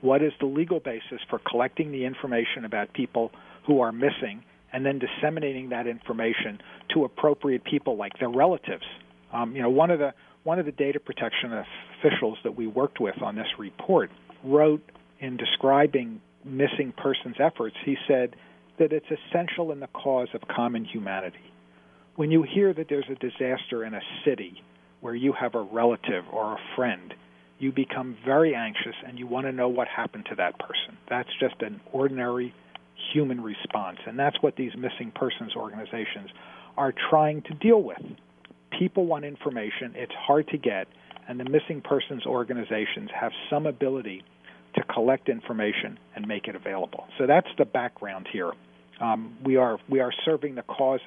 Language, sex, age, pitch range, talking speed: English, male, 50-69, 115-145 Hz, 170 wpm